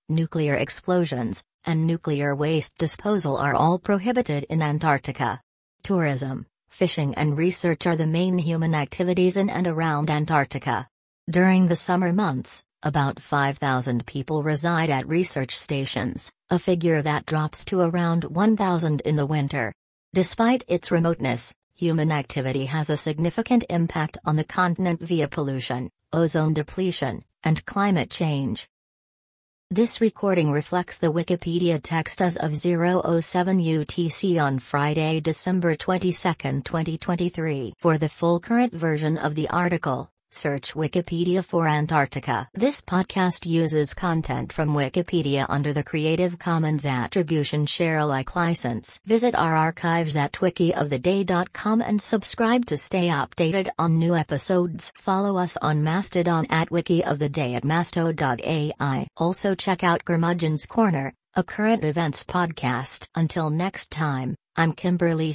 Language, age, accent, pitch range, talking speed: English, 40-59, American, 150-180 Hz, 130 wpm